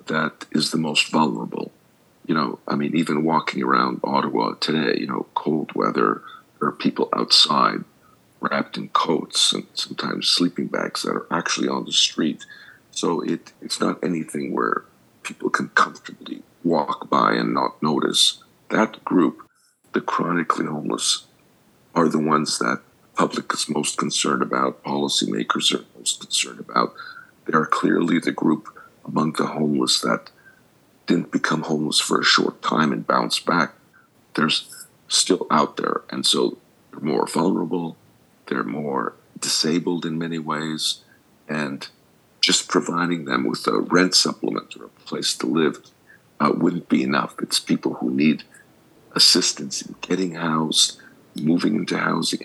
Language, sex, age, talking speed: English, male, 50-69, 150 wpm